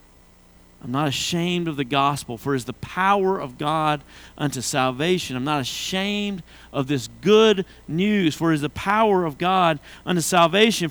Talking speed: 170 wpm